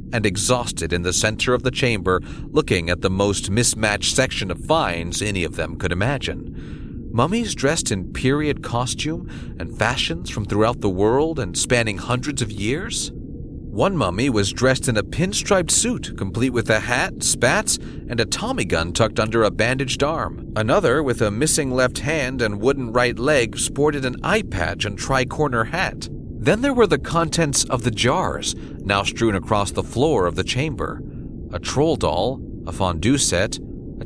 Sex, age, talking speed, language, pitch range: male, 40-59, 175 wpm, English, 100-135 Hz